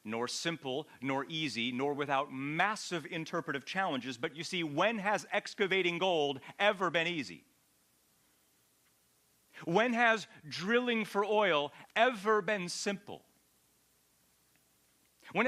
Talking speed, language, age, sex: 110 wpm, English, 40-59, male